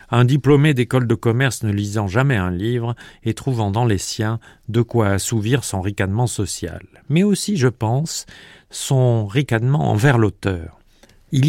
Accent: French